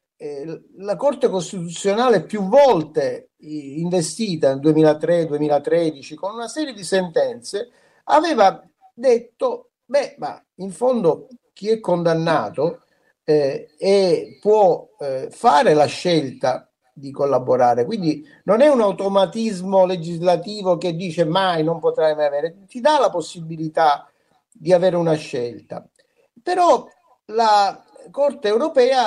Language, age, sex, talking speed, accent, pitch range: Italian, 50-69, male, 115 wpm, native, 170-255 Hz